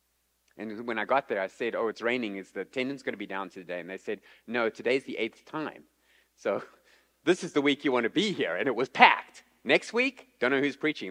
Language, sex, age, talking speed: English, male, 30-49, 250 wpm